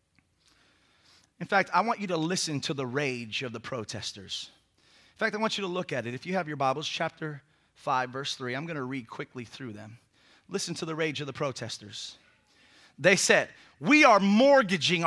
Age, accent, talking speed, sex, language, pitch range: 30-49, American, 200 wpm, male, English, 125-205 Hz